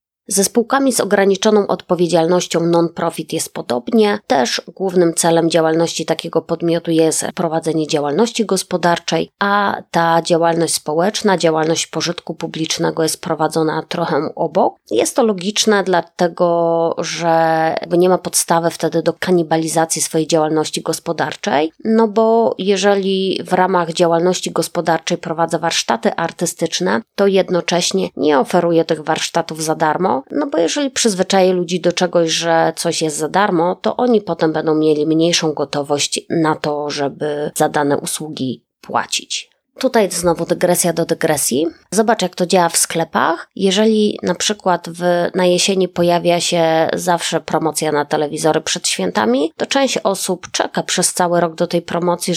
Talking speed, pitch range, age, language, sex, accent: 140 wpm, 160-185 Hz, 20-39, Polish, female, native